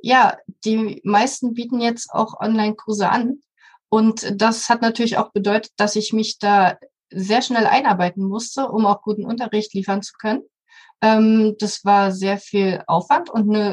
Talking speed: 155 wpm